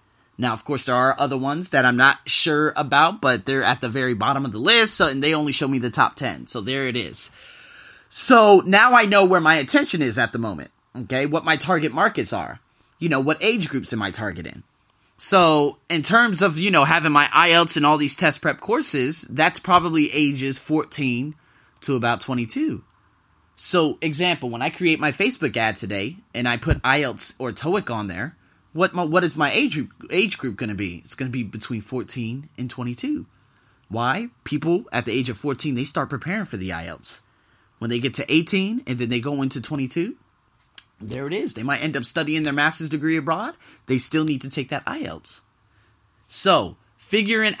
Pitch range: 125-180 Hz